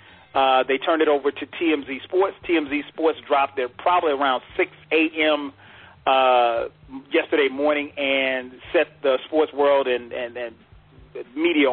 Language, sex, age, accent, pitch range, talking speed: English, male, 40-59, American, 135-160 Hz, 140 wpm